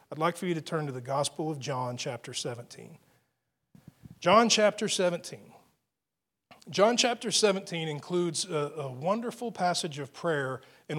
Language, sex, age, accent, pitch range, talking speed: English, male, 40-59, American, 145-180 Hz, 145 wpm